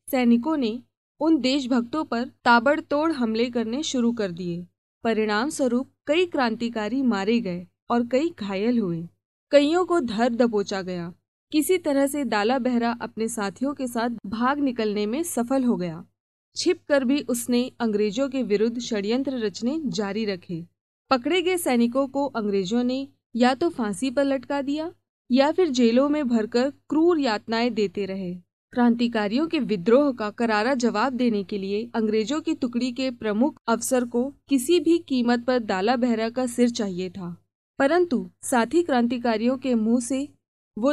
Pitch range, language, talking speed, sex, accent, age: 215-275 Hz, Hindi, 155 wpm, female, native, 20-39